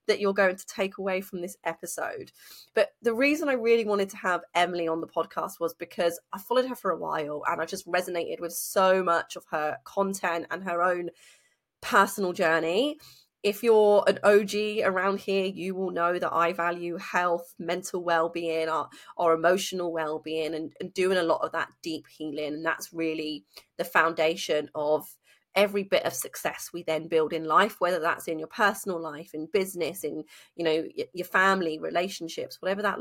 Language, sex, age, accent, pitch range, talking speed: English, female, 30-49, British, 165-200 Hz, 190 wpm